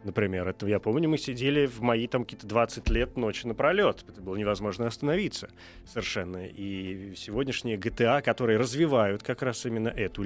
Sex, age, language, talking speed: male, 30-49, Russian, 150 wpm